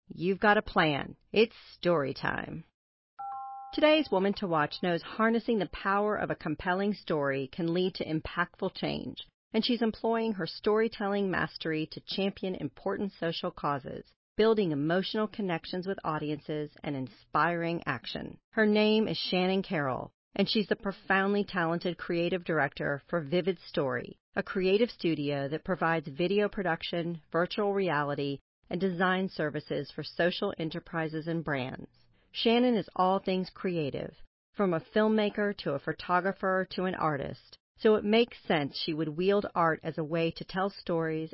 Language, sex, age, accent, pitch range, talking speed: English, female, 40-59, American, 165-205 Hz, 150 wpm